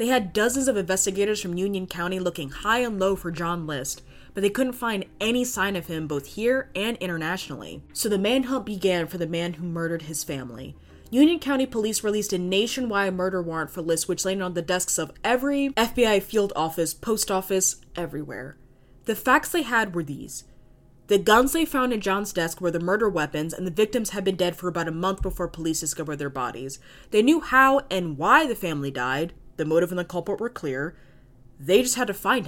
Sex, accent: female, American